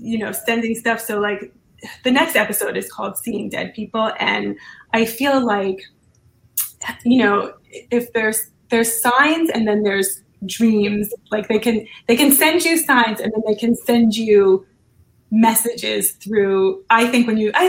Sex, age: female, 20-39